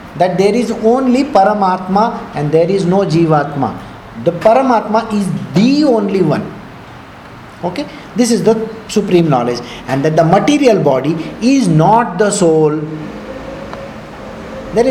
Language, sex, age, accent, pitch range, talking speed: English, male, 50-69, Indian, 175-225 Hz, 130 wpm